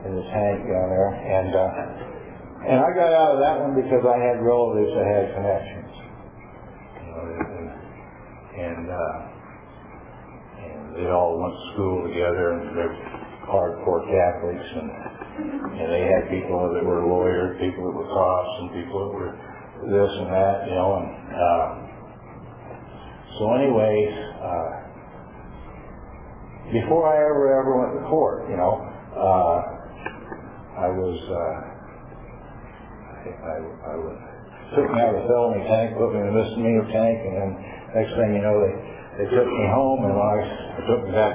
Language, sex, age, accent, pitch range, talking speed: English, male, 50-69, American, 95-120 Hz, 155 wpm